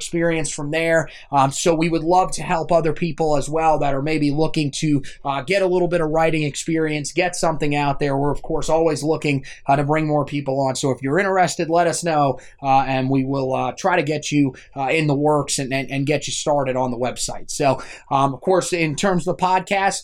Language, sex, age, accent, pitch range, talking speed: English, male, 20-39, American, 150-180 Hz, 240 wpm